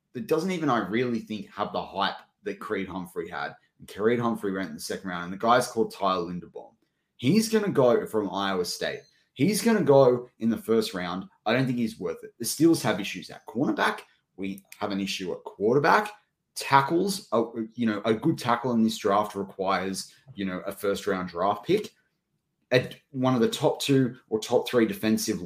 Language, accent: English, Australian